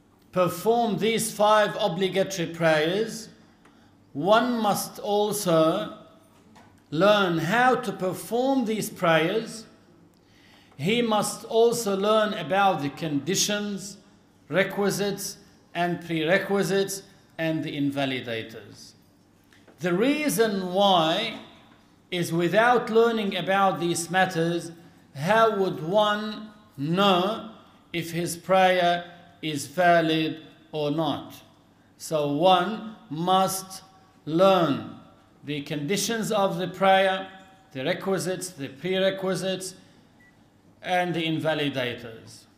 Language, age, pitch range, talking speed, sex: Arabic, 50-69, 155-195 Hz, 90 wpm, male